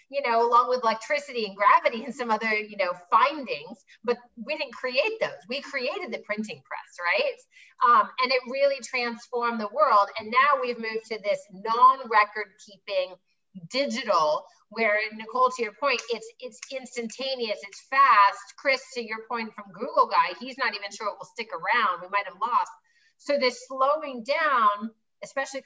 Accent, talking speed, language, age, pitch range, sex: American, 170 wpm, English, 30-49, 210-275 Hz, female